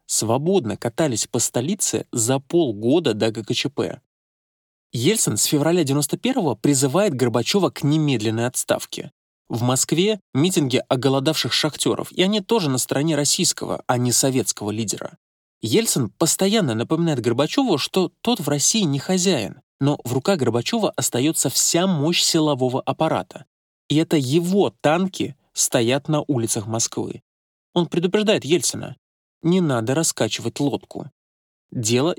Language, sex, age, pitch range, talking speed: Russian, male, 20-39, 125-180 Hz, 125 wpm